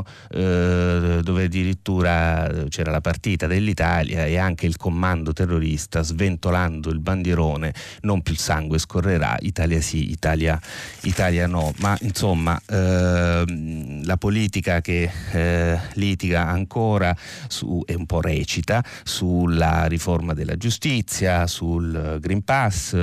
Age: 30-49